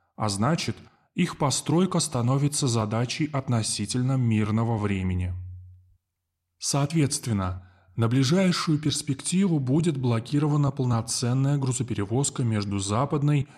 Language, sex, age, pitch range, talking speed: Russian, male, 20-39, 110-150 Hz, 85 wpm